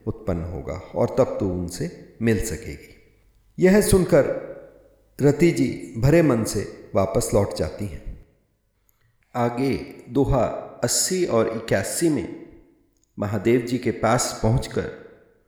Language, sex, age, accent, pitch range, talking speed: Hindi, male, 50-69, native, 100-135 Hz, 115 wpm